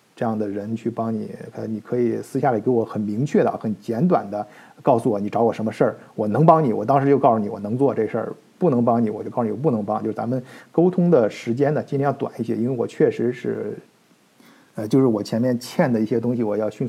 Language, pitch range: Chinese, 110-135 Hz